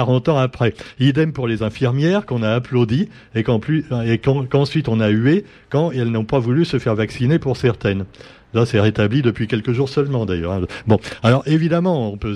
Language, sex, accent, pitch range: French, male, French, 115-145 Hz